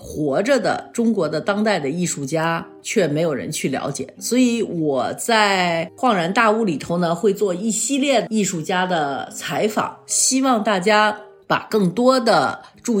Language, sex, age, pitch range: Chinese, female, 50-69, 160-220 Hz